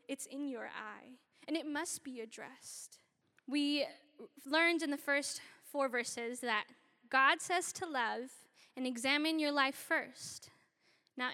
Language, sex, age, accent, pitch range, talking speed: English, female, 10-29, American, 260-335 Hz, 145 wpm